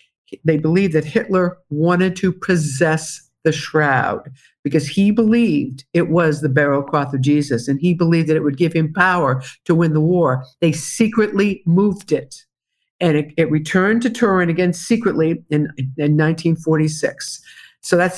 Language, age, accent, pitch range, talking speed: English, 50-69, American, 155-185 Hz, 160 wpm